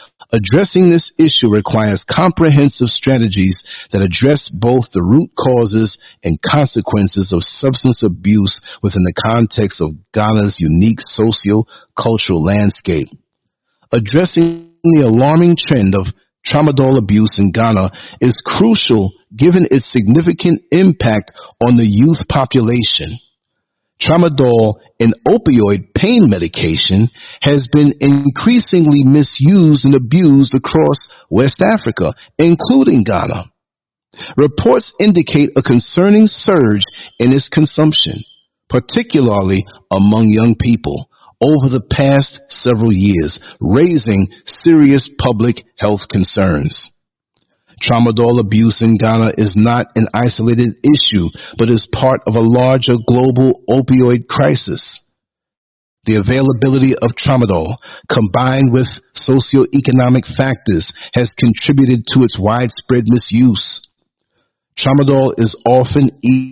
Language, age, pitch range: English, 50-69, 110-140 Hz